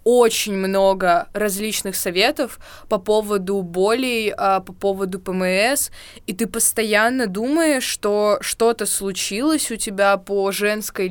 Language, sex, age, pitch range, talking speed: Russian, female, 20-39, 195-225 Hz, 115 wpm